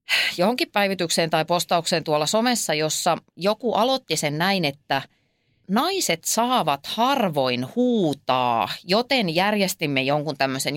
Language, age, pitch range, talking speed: Finnish, 30-49, 165-255 Hz, 110 wpm